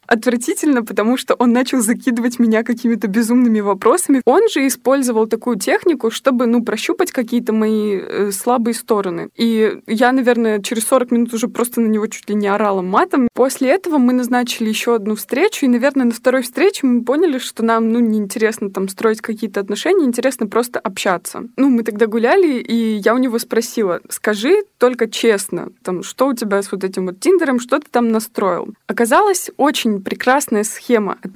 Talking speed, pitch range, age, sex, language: 180 wpm, 215-260 Hz, 20-39, female, Russian